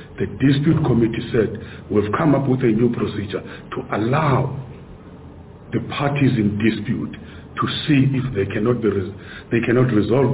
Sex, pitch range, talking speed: male, 95-130 Hz, 140 wpm